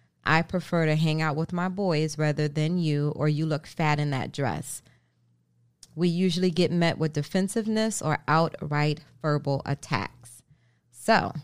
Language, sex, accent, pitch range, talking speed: English, female, American, 145-185 Hz, 150 wpm